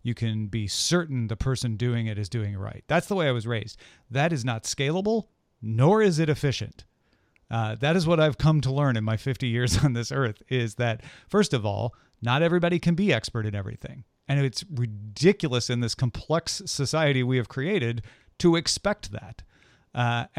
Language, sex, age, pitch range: English, male, 40-59, 120-160 Hz